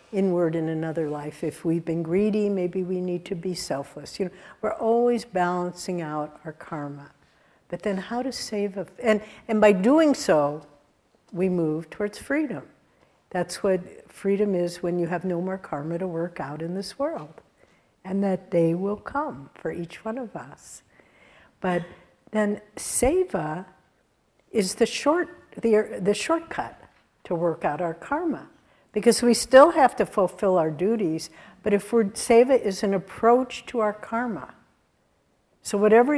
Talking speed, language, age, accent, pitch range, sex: 160 wpm, English, 60-79, American, 170-225 Hz, female